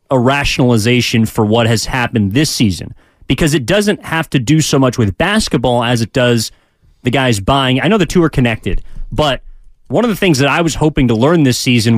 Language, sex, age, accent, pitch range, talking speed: English, male, 30-49, American, 120-160 Hz, 215 wpm